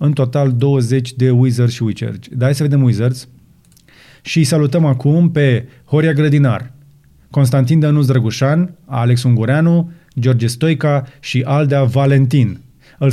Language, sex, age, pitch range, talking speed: Romanian, male, 30-49, 120-145 Hz, 135 wpm